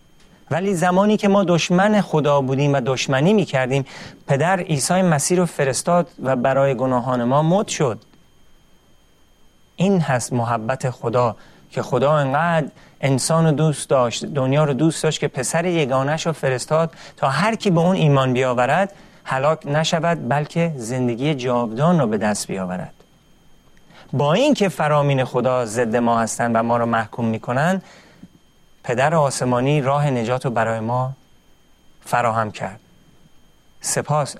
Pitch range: 130-170 Hz